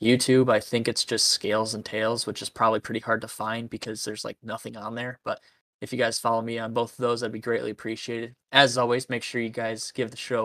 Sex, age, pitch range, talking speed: male, 10-29, 115-125 Hz, 255 wpm